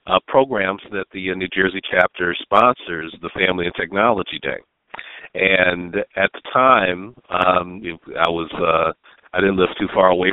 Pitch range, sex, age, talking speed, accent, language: 90-105 Hz, male, 50-69, 165 wpm, American, English